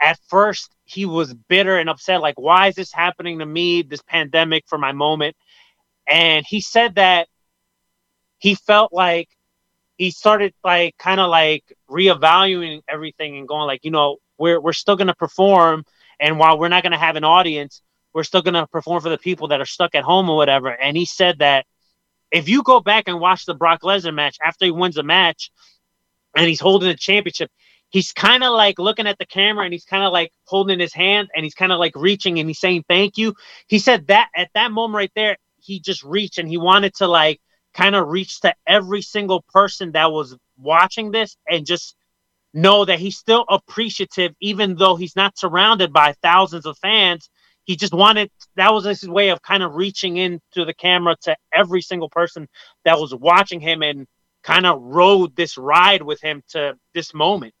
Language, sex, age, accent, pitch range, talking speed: English, male, 30-49, American, 160-195 Hz, 205 wpm